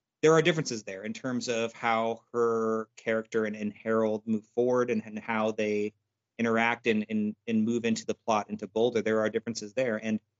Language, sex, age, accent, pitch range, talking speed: English, male, 30-49, American, 110-130 Hz, 195 wpm